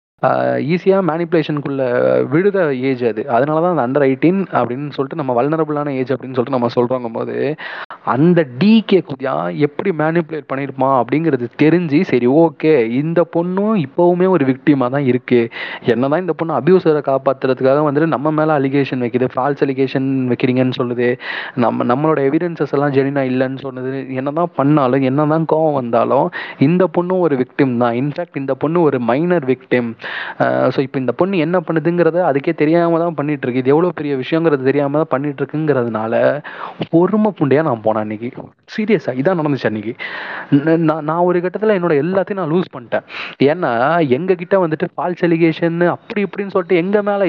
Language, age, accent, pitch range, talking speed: Tamil, 30-49, native, 130-170 Hz, 150 wpm